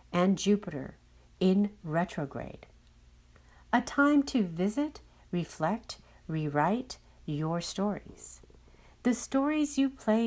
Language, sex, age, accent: English, female, 60-79, American